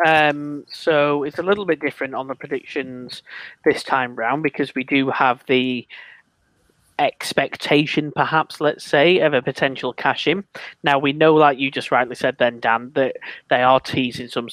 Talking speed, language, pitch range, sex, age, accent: 170 wpm, English, 120-145 Hz, male, 20-39, British